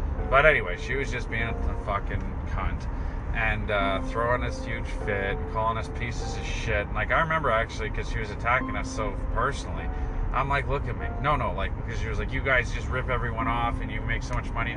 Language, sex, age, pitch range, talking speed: English, male, 30-49, 85-120 Hz, 230 wpm